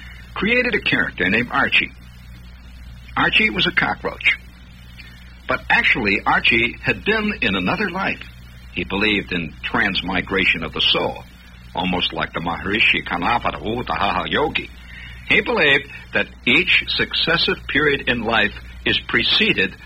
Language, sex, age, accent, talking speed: English, male, 60-79, American, 125 wpm